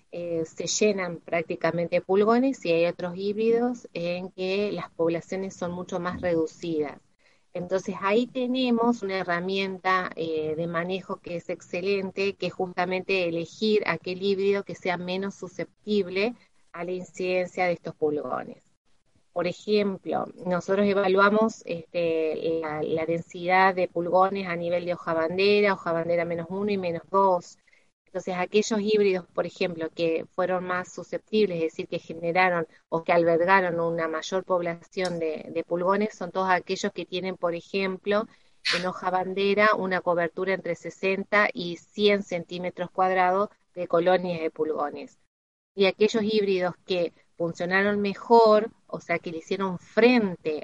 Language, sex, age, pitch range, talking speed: Spanish, female, 30-49, 170-200 Hz, 145 wpm